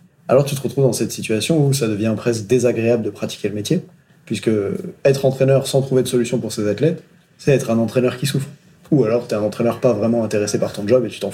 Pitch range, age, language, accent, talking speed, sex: 110-145 Hz, 30-49, French, French, 245 wpm, male